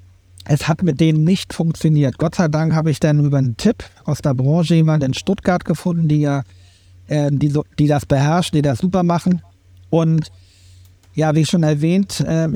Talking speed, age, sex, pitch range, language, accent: 190 wpm, 60-79, male, 120-170 Hz, German, German